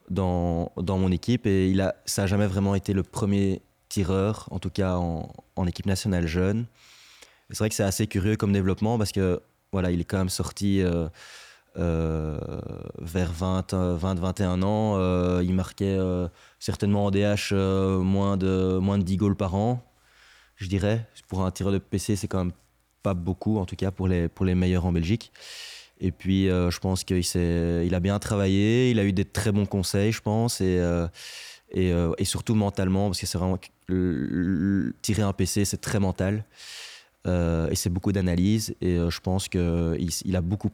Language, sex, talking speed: French, male, 200 wpm